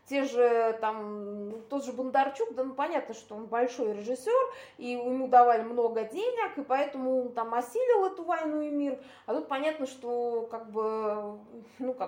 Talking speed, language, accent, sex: 160 wpm, Russian, native, female